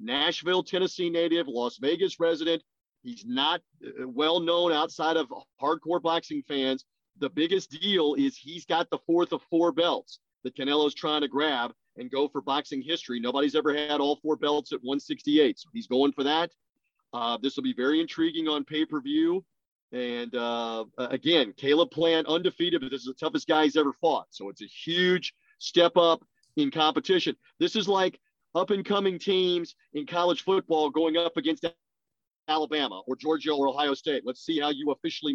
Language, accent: English, American